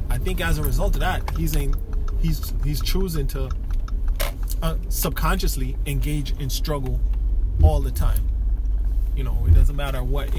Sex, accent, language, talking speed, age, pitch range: male, American, English, 160 wpm, 20-39, 90-145 Hz